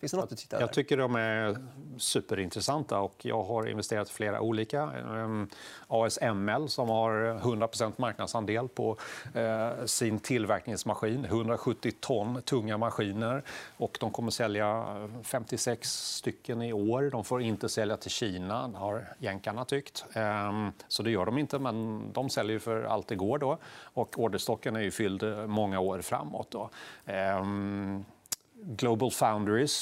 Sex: male